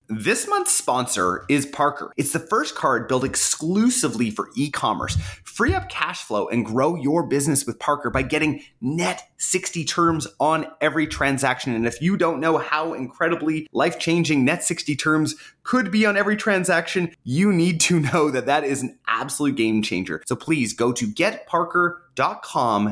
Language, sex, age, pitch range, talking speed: English, male, 30-49, 120-165 Hz, 165 wpm